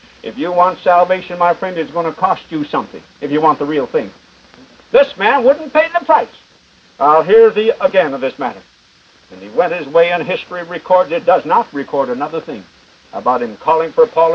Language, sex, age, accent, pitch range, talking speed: English, male, 60-79, American, 160-245 Hz, 210 wpm